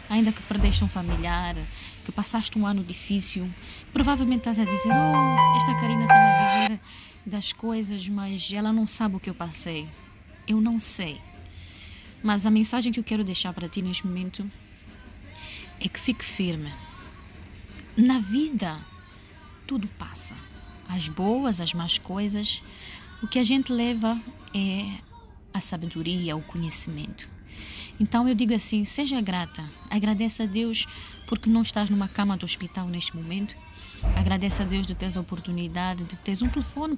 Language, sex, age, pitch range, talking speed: English, female, 20-39, 170-215 Hz, 155 wpm